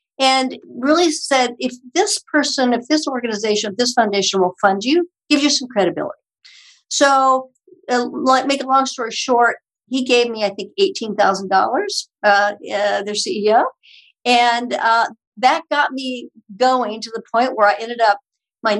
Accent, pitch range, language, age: American, 205-260 Hz, English, 60-79